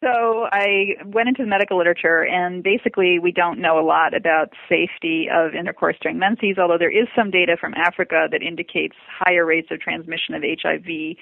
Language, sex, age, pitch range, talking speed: English, female, 30-49, 175-235 Hz, 185 wpm